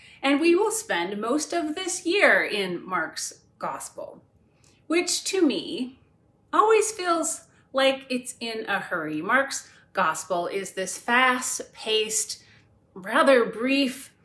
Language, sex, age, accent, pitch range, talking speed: English, female, 30-49, American, 210-285 Hz, 120 wpm